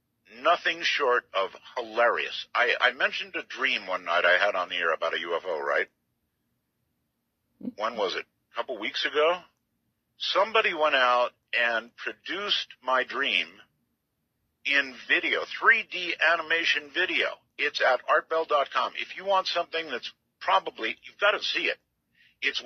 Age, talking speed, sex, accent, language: 50-69, 145 wpm, male, American, English